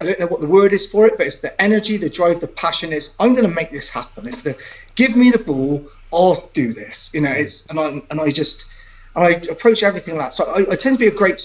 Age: 30-49